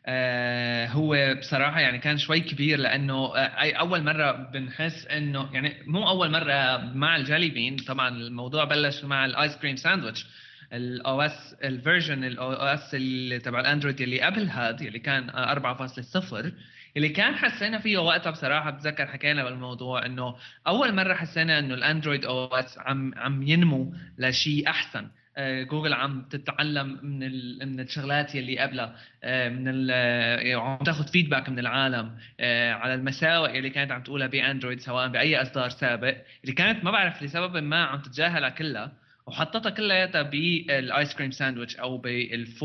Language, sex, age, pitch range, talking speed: Arabic, male, 20-39, 130-155 Hz, 140 wpm